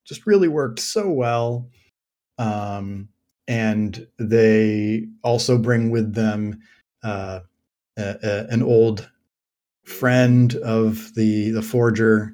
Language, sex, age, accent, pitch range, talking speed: English, male, 30-49, American, 105-125 Hz, 105 wpm